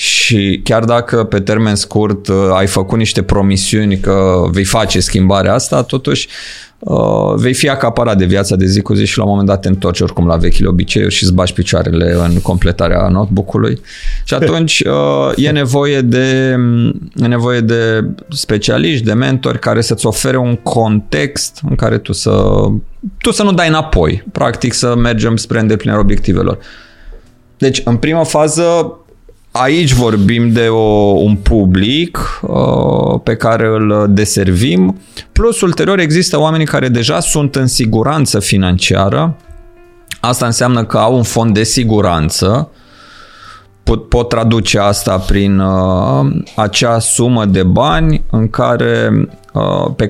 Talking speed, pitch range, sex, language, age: 145 wpm, 100-130 Hz, male, Romanian, 30-49